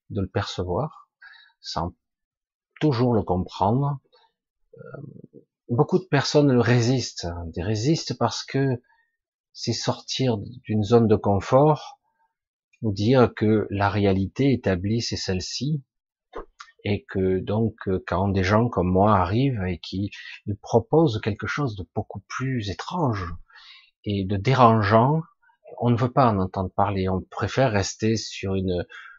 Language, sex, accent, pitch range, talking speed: French, male, French, 100-135 Hz, 125 wpm